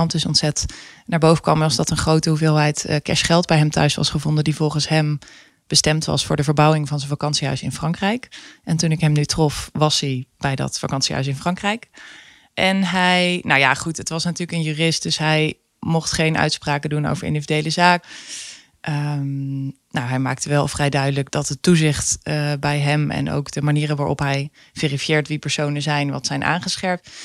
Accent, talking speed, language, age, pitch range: Dutch, 195 wpm, Dutch, 20-39, 140-160 Hz